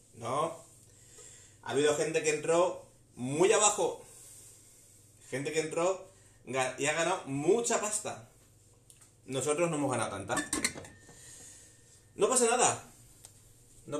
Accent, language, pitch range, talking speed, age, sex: Spanish, Spanish, 115-150 Hz, 105 wpm, 30-49, male